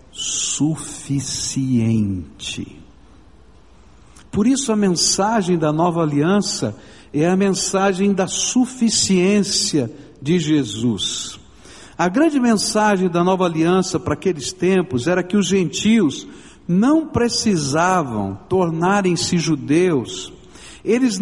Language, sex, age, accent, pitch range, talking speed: Portuguese, male, 60-79, Brazilian, 170-220 Hz, 95 wpm